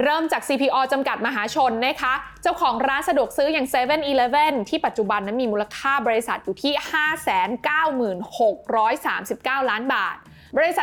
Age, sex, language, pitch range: 20-39, female, Thai, 215-285 Hz